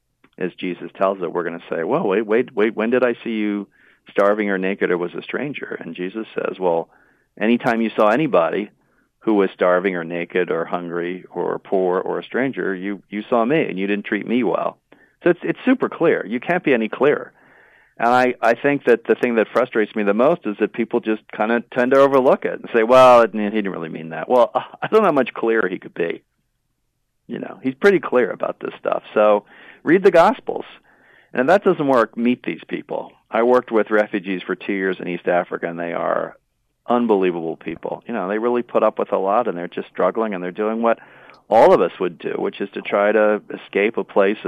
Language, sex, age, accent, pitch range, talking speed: English, male, 40-59, American, 95-120 Hz, 230 wpm